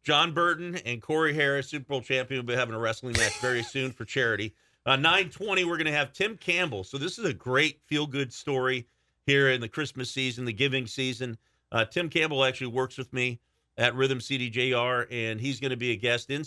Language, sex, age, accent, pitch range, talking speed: English, male, 40-59, American, 120-145 Hz, 220 wpm